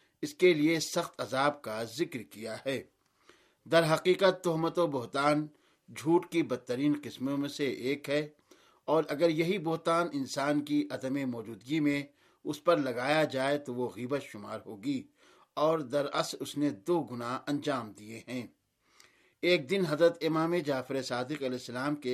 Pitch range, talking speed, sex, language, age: 135-170 Hz, 160 wpm, male, Urdu, 50-69